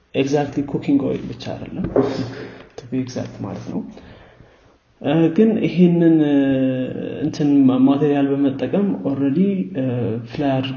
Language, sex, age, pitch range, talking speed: Amharic, male, 30-49, 115-145 Hz, 85 wpm